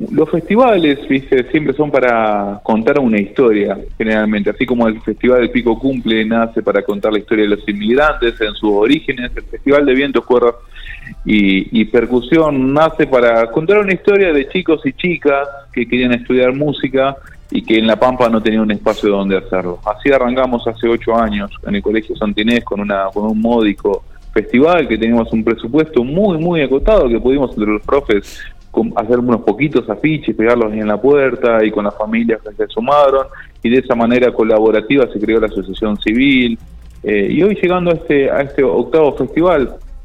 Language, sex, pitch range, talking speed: Spanish, male, 105-135 Hz, 185 wpm